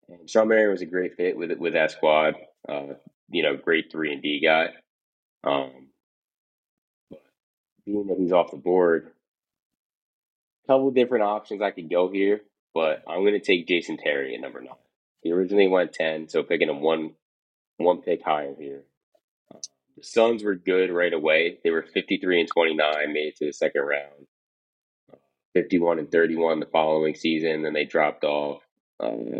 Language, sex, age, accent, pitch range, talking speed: English, male, 20-39, American, 75-90 Hz, 175 wpm